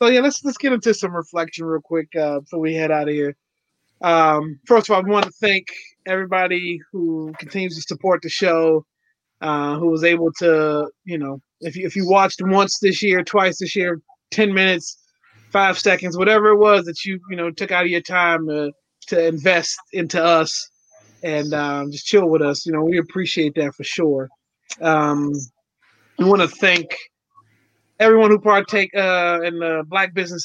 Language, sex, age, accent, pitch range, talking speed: English, male, 30-49, American, 160-195 Hz, 190 wpm